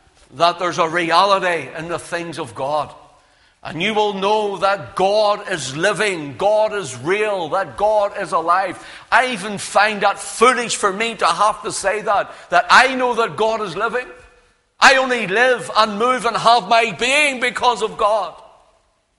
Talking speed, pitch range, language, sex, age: 170 wpm, 165-225 Hz, English, male, 60-79